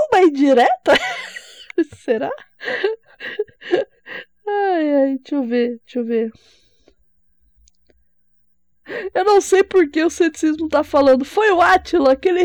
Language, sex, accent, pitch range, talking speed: Portuguese, female, Brazilian, 240-345 Hz, 110 wpm